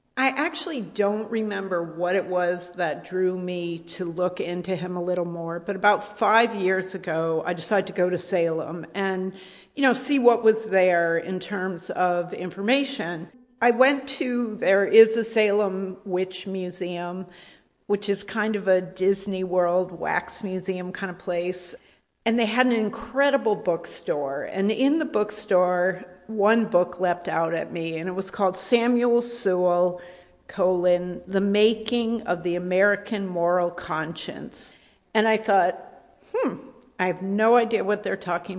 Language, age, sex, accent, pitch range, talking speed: English, 50-69, female, American, 180-220 Hz, 155 wpm